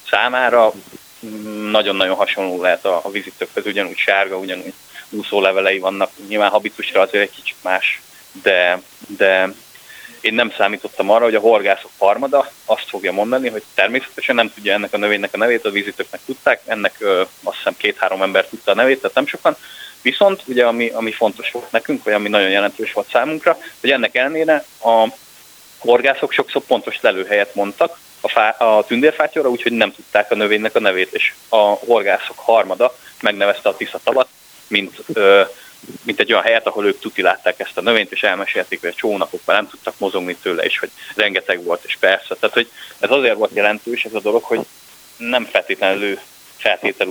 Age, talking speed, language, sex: 20-39, 170 wpm, Hungarian, male